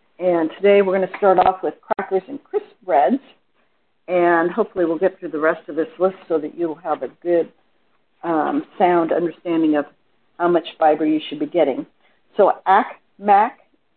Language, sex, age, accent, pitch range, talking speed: English, female, 50-69, American, 165-215 Hz, 175 wpm